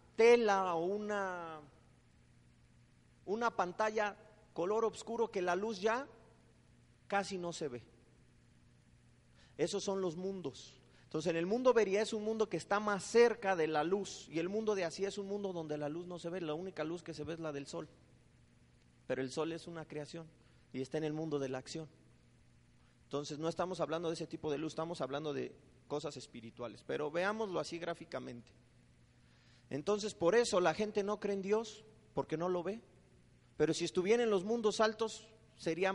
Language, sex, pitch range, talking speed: Spanish, male, 145-200 Hz, 185 wpm